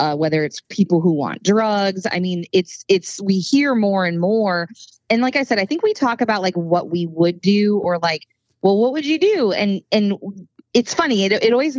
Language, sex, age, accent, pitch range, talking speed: English, female, 20-39, American, 175-215 Hz, 225 wpm